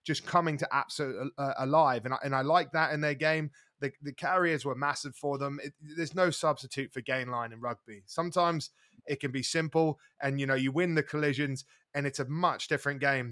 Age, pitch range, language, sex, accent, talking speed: 20-39, 140-165 Hz, English, male, British, 220 wpm